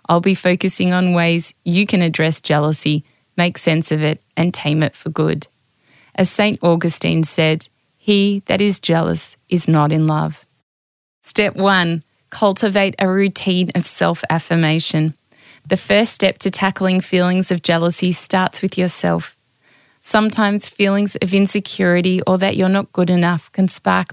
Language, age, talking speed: English, 20-39, 150 wpm